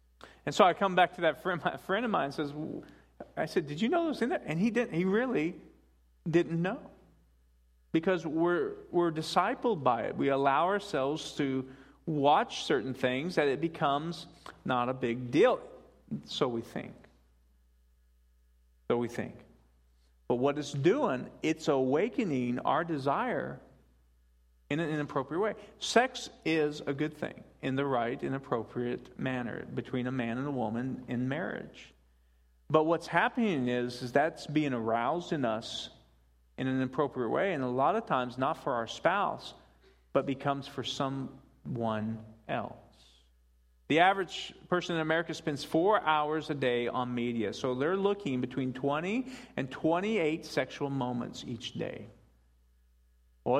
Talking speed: 155 wpm